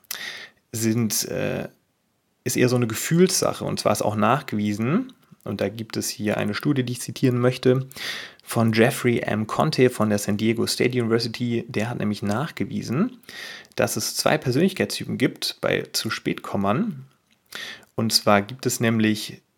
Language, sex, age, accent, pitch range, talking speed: German, male, 30-49, German, 105-135 Hz, 155 wpm